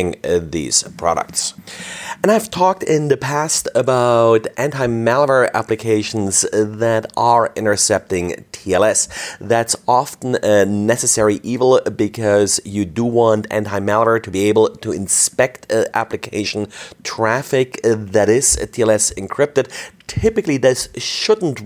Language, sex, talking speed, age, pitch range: English, male, 110 wpm, 30-49, 105-125 Hz